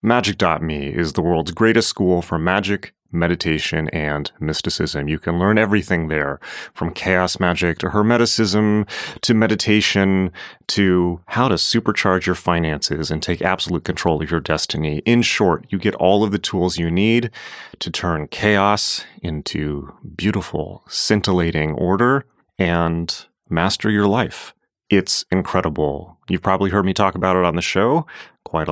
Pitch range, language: 85-105 Hz, English